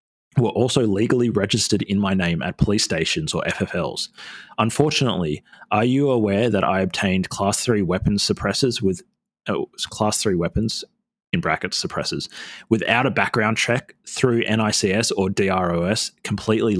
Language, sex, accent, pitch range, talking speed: English, male, Australian, 100-125 Hz, 145 wpm